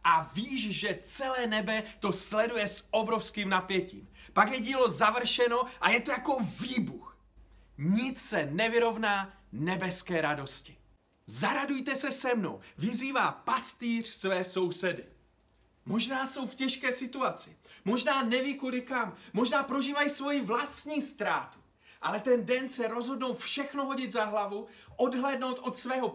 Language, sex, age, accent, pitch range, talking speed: Czech, male, 40-59, native, 205-255 Hz, 135 wpm